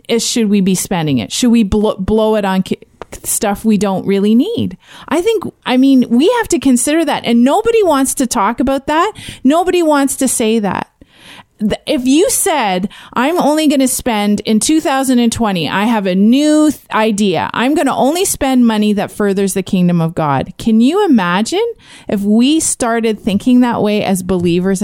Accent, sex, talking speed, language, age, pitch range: American, female, 190 wpm, English, 30-49, 195-260 Hz